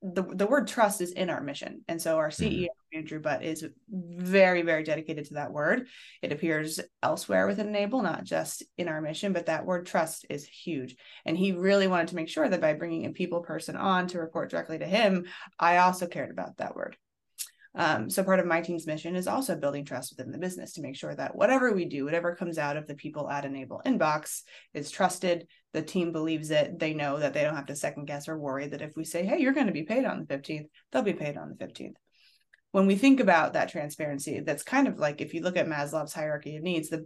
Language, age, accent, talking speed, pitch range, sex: English, 20-39, American, 240 wpm, 150-190 Hz, female